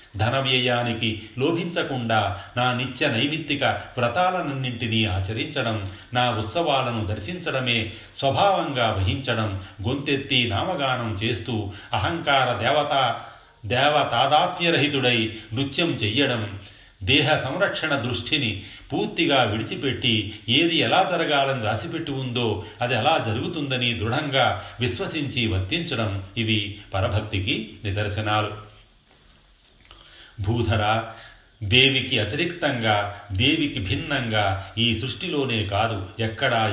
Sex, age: male, 40-59